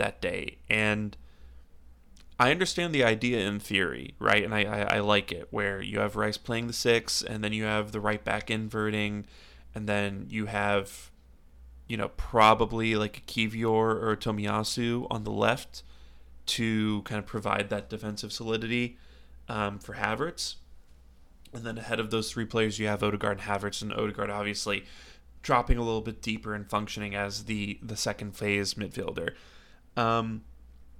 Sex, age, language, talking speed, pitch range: male, 20-39, English, 165 wpm, 75-110 Hz